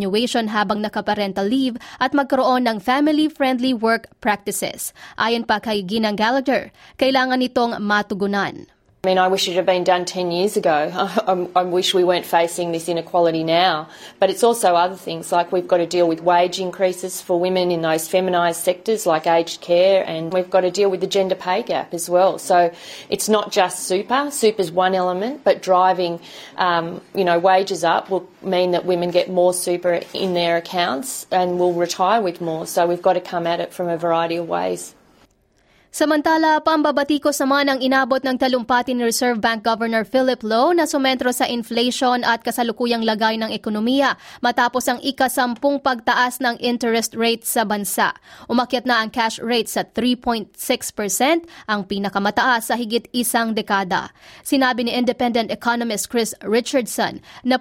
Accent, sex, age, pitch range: Australian, female, 30-49, 180-250 Hz